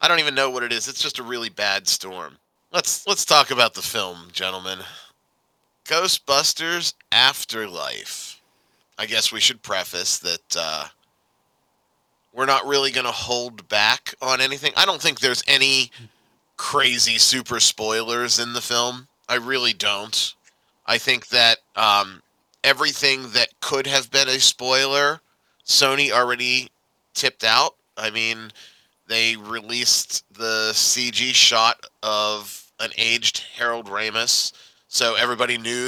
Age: 30-49